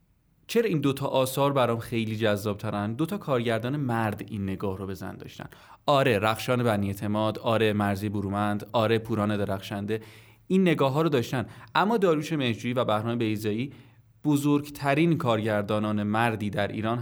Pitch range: 110-150 Hz